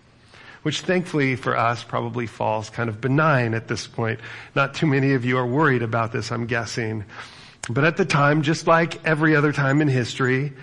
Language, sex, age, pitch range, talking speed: English, male, 40-59, 120-150 Hz, 190 wpm